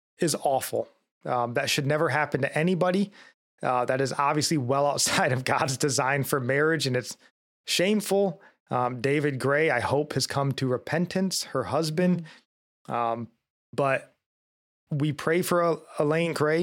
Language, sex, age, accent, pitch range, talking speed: English, male, 30-49, American, 130-155 Hz, 150 wpm